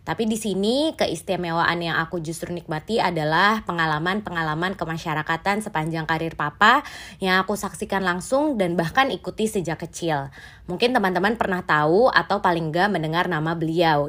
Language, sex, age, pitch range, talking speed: Indonesian, female, 20-39, 165-200 Hz, 140 wpm